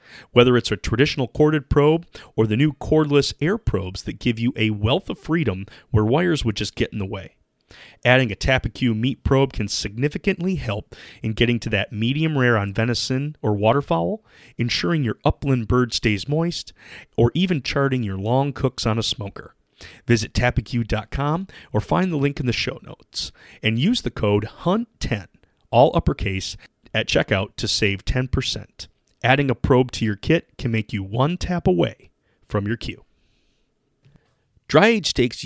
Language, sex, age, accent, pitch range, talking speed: English, male, 30-49, American, 105-135 Hz, 170 wpm